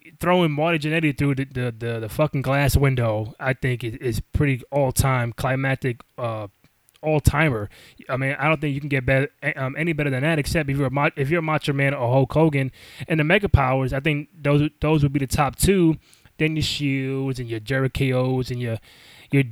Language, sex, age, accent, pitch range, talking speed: English, male, 20-39, American, 130-155 Hz, 210 wpm